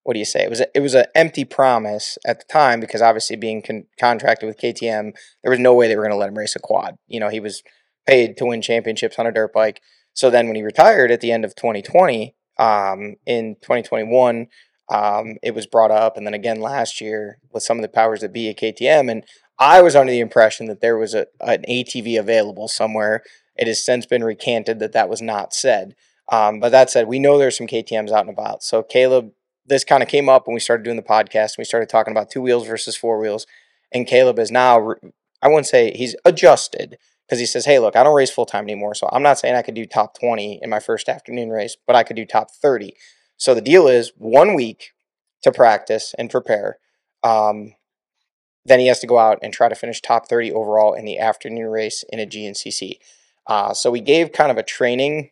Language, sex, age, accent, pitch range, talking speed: English, male, 20-39, American, 110-125 Hz, 235 wpm